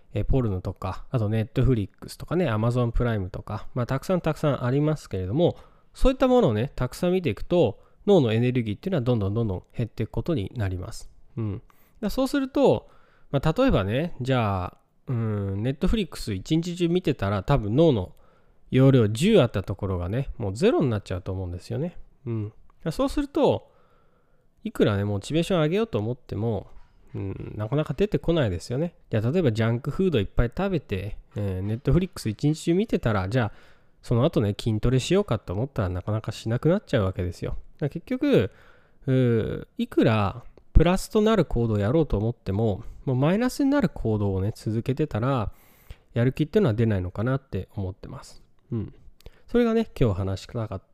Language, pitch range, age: Japanese, 105-165 Hz, 20-39